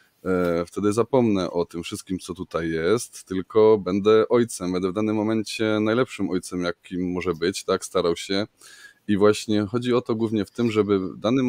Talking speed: 180 wpm